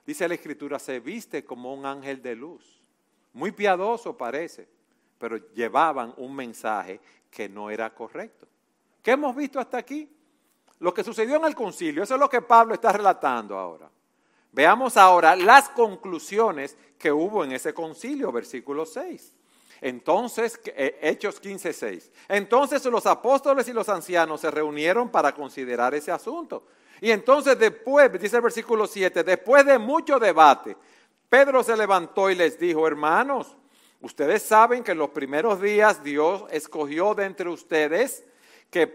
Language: Spanish